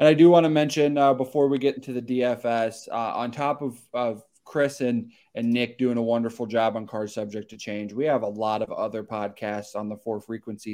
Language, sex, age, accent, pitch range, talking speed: English, male, 20-39, American, 105-120 Hz, 235 wpm